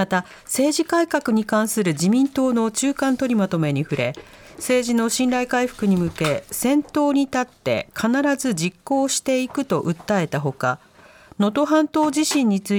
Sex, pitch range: female, 170-275 Hz